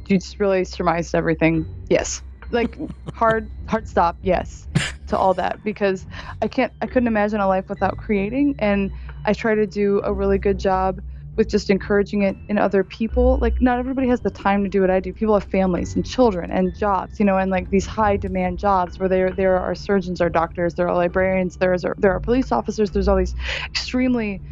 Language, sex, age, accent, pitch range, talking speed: English, female, 20-39, American, 185-215 Hz, 215 wpm